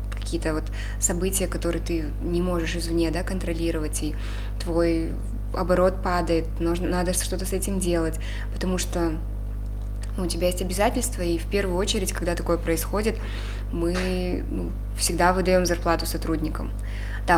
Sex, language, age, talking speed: female, Russian, 20-39, 135 wpm